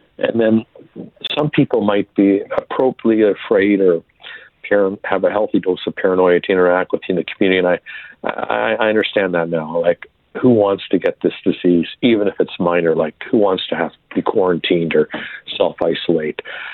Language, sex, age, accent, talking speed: English, male, 50-69, American, 170 wpm